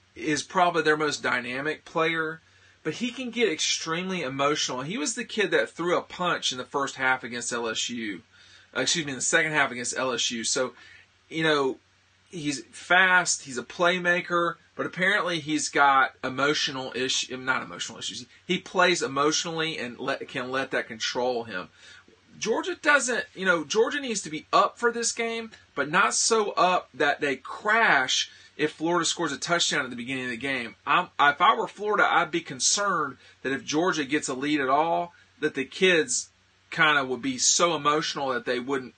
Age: 40-59